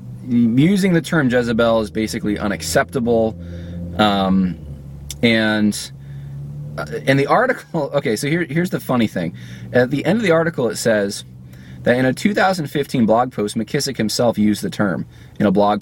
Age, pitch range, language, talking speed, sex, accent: 20-39, 105-155 Hz, English, 155 wpm, male, American